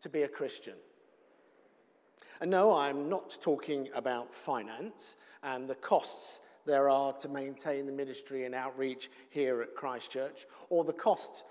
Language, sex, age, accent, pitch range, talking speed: English, male, 50-69, British, 135-170 Hz, 145 wpm